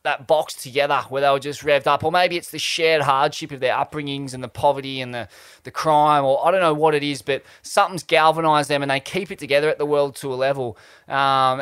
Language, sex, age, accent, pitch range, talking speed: English, male, 20-39, Australian, 140-170 Hz, 250 wpm